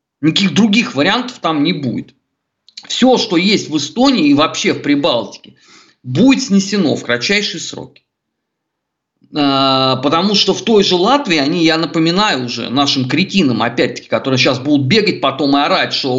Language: Russian